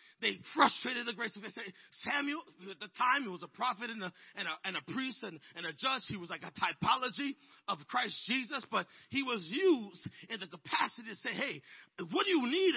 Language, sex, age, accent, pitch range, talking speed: English, male, 40-59, American, 205-270 Hz, 230 wpm